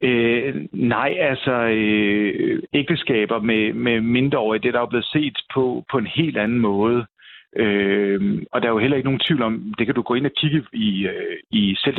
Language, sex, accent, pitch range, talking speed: Danish, male, native, 110-140 Hz, 210 wpm